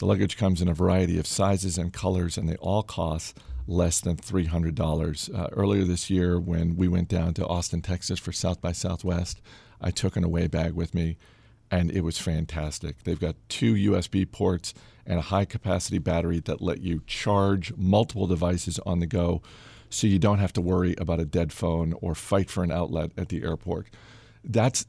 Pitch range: 90-110 Hz